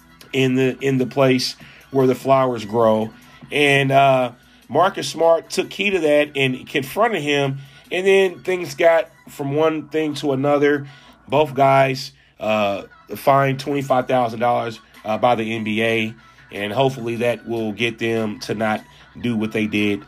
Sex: male